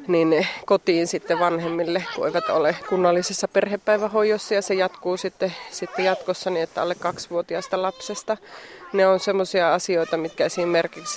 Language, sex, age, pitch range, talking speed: Finnish, female, 30-49, 170-195 Hz, 140 wpm